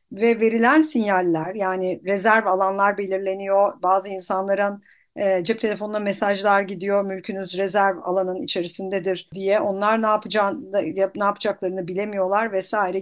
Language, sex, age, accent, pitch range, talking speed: Turkish, female, 50-69, native, 200-245 Hz, 115 wpm